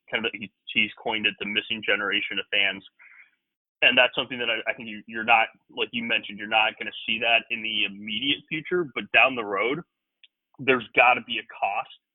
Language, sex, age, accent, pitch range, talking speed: English, male, 20-39, American, 105-120 Hz, 215 wpm